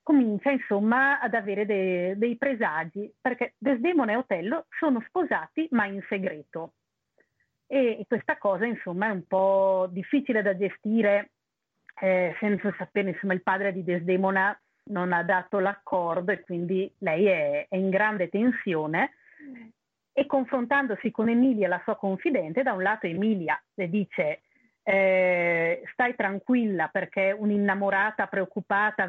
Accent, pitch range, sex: native, 190-235 Hz, female